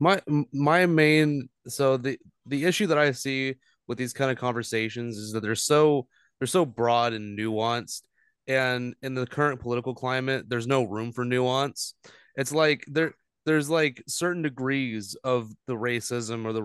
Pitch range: 115-145 Hz